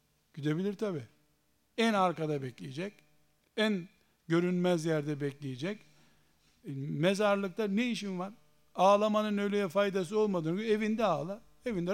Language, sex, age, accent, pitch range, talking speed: Turkish, male, 60-79, native, 175-215 Hz, 100 wpm